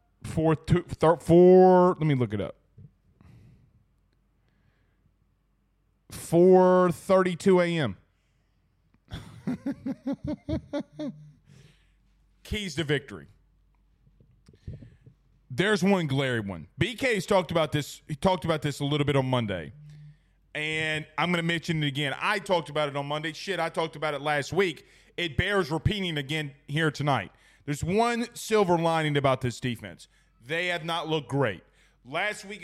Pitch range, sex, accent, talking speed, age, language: 140-170 Hz, male, American, 130 wpm, 30-49, English